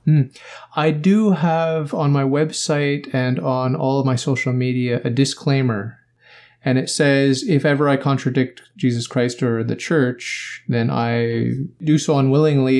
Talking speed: 155 wpm